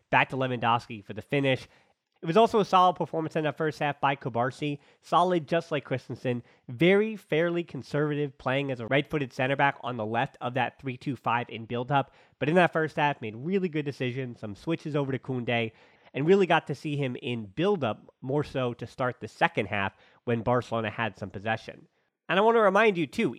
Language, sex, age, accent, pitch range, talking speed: English, male, 30-49, American, 125-160 Hz, 205 wpm